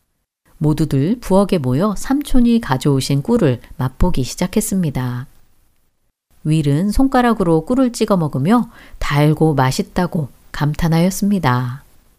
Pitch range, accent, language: 130-205 Hz, native, Korean